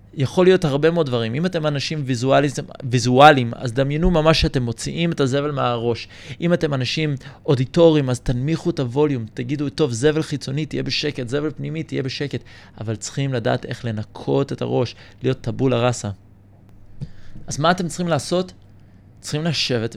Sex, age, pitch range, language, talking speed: male, 20-39, 115-150 Hz, Hebrew, 155 wpm